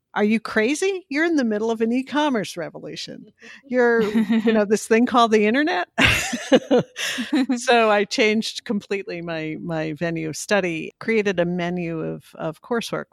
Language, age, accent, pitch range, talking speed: English, 50-69, American, 155-205 Hz, 155 wpm